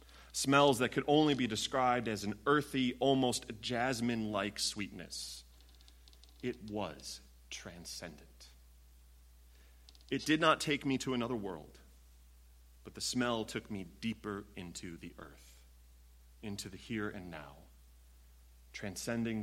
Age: 30-49